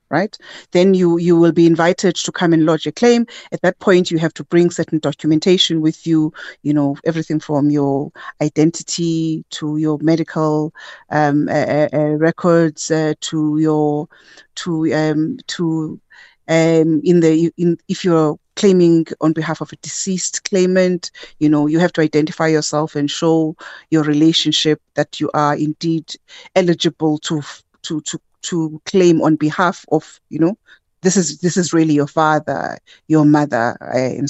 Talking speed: 160 wpm